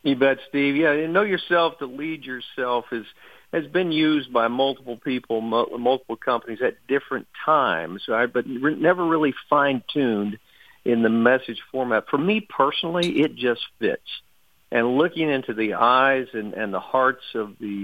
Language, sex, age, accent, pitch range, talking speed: English, male, 50-69, American, 110-135 Hz, 170 wpm